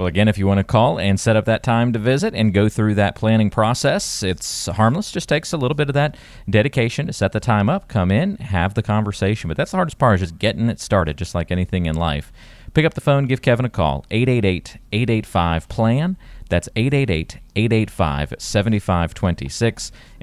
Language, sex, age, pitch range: English, male, 30-49, 85-115 Hz